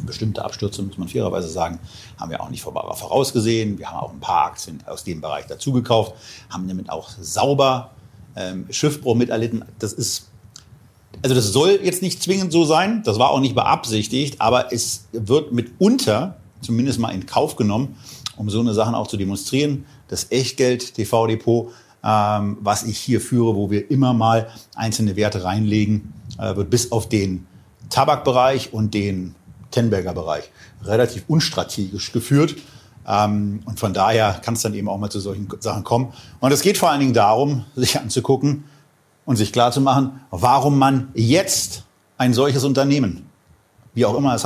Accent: German